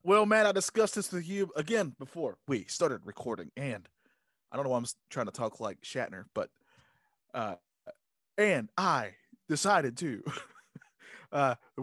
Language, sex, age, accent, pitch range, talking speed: English, male, 20-39, American, 130-175 Hz, 150 wpm